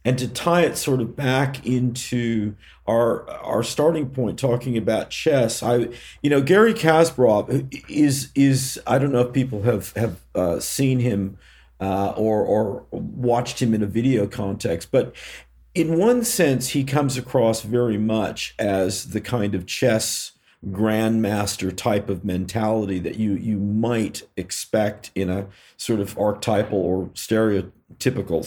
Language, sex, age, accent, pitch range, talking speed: English, male, 50-69, American, 105-135 Hz, 150 wpm